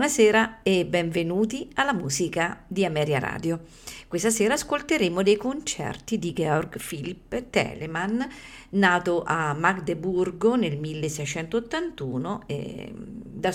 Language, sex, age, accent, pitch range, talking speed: Italian, female, 50-69, native, 155-215 Hz, 105 wpm